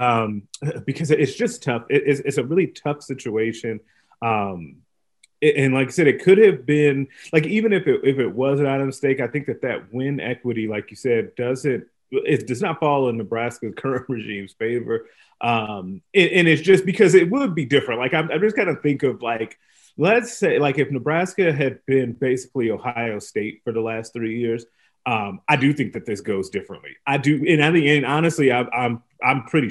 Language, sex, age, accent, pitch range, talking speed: English, male, 30-49, American, 115-145 Hz, 210 wpm